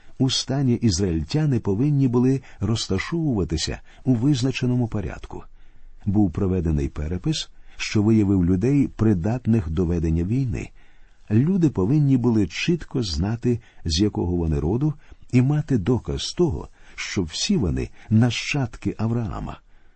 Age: 50-69